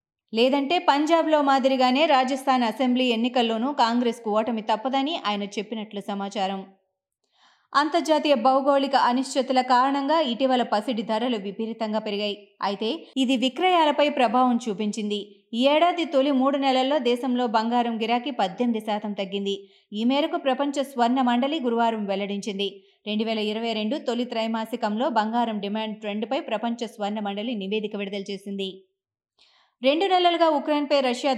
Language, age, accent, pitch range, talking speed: Telugu, 20-39, native, 220-280 Hz, 110 wpm